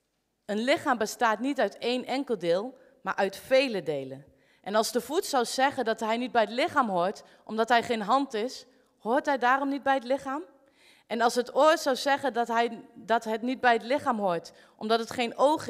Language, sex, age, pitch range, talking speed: Dutch, female, 30-49, 205-265 Hz, 210 wpm